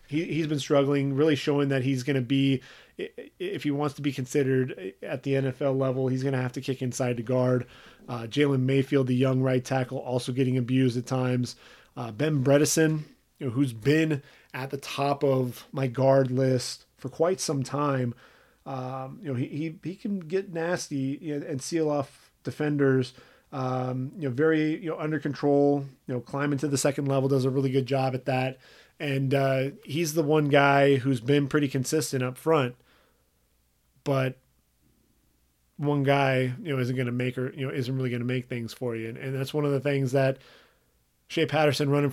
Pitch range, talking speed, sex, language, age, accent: 130-145 Hz, 200 wpm, male, English, 30-49, American